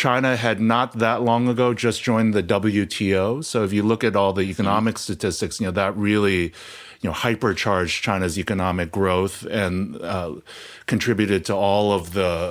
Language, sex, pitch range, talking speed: English, male, 95-115 Hz, 175 wpm